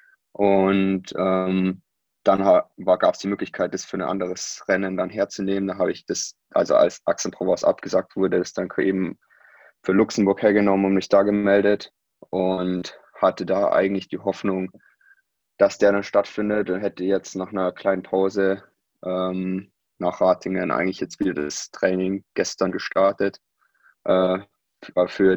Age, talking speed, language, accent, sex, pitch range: 20-39, 145 wpm, German, German, male, 90-100 Hz